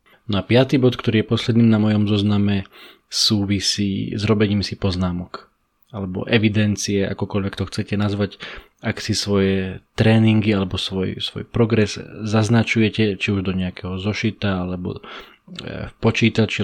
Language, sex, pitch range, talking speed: Slovak, male, 100-110 Hz, 135 wpm